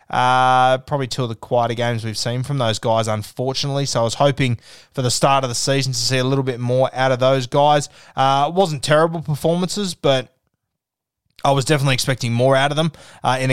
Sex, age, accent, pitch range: male, 20-39, Australian, 120-140 Hz